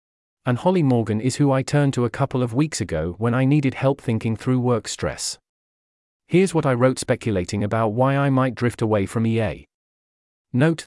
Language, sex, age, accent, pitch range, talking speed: English, male, 40-59, British, 105-135 Hz, 195 wpm